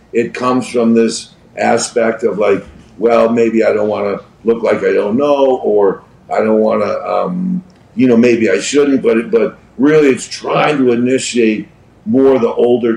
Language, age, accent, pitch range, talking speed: English, 50-69, American, 105-130 Hz, 190 wpm